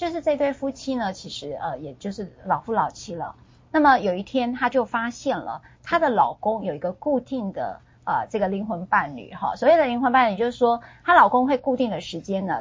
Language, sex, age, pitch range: Chinese, female, 30-49, 190-260 Hz